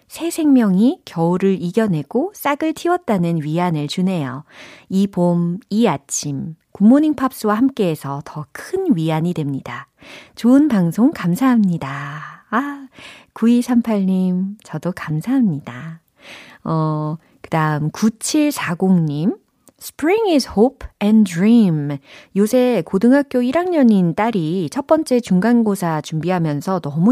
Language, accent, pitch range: Korean, native, 155-255 Hz